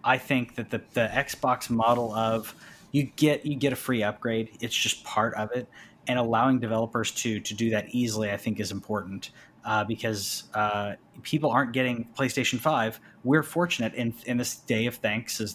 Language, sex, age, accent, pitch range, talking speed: English, male, 20-39, American, 110-125 Hz, 190 wpm